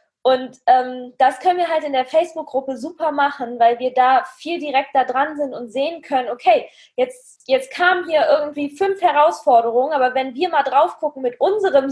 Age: 20-39